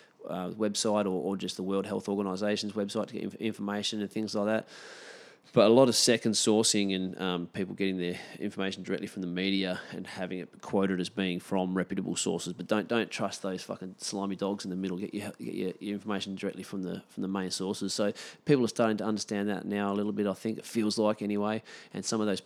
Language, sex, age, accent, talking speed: English, male, 20-39, Australian, 235 wpm